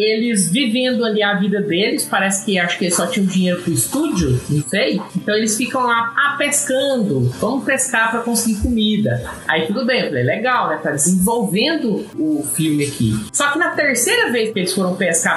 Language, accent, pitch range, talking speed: Portuguese, Brazilian, 195-270 Hz, 195 wpm